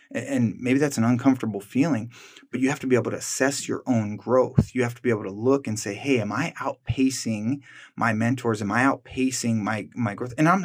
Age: 20-39